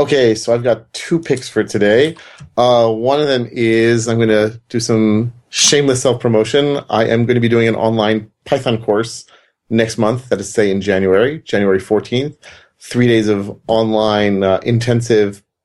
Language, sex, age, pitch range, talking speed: English, male, 30-49, 105-125 Hz, 175 wpm